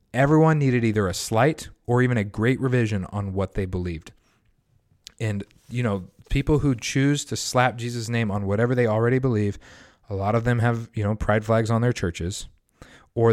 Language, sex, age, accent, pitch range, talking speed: English, male, 30-49, American, 95-120 Hz, 190 wpm